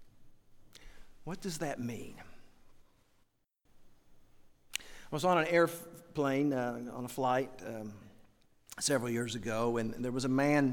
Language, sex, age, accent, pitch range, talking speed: English, male, 50-69, American, 120-180 Hz, 125 wpm